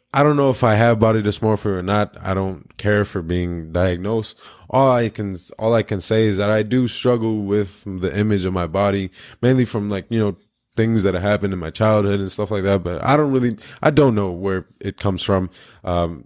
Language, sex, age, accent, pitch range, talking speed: English, male, 20-39, American, 90-115 Hz, 230 wpm